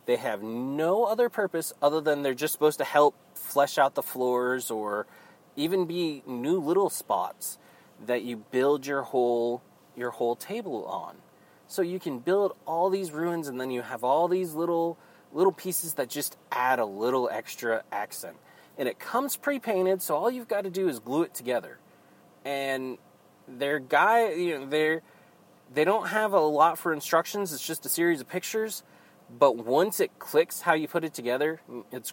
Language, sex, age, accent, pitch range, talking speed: English, male, 30-49, American, 130-185 Hz, 180 wpm